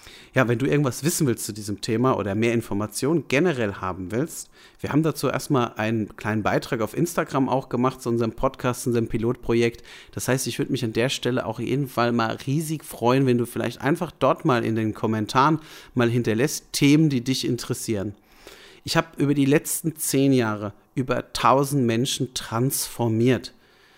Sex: male